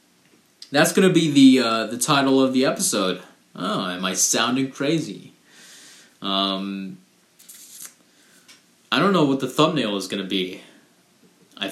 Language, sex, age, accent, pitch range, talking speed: English, male, 20-39, American, 95-130 Hz, 135 wpm